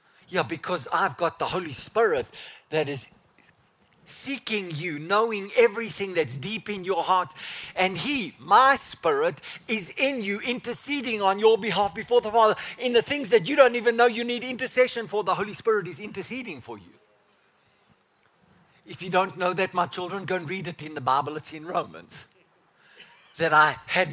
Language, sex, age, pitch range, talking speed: English, male, 50-69, 175-230 Hz, 175 wpm